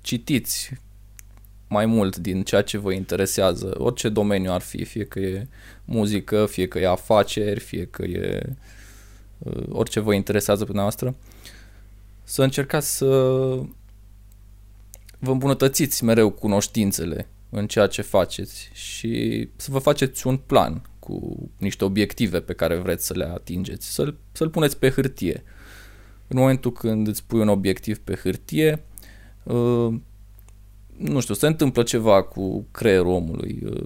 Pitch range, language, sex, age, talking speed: 100-125 Hz, Romanian, male, 20-39, 135 wpm